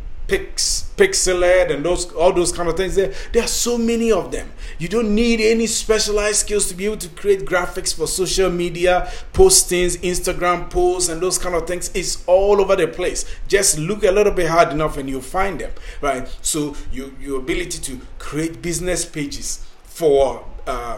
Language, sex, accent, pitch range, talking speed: English, male, Nigerian, 155-185 Hz, 185 wpm